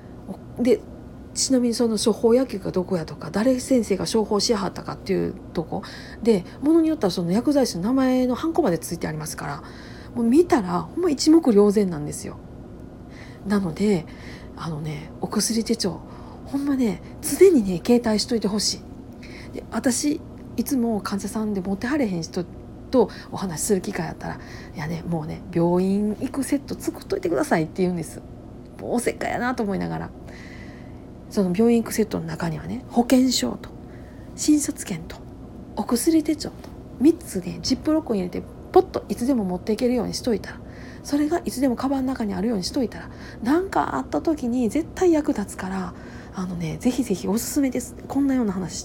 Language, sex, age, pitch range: Japanese, female, 40-59, 185-265 Hz